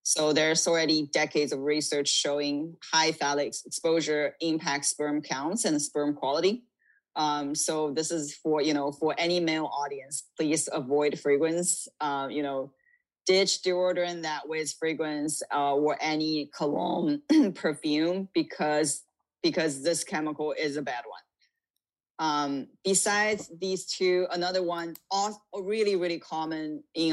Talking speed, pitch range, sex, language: 135 wpm, 145-175 Hz, female, English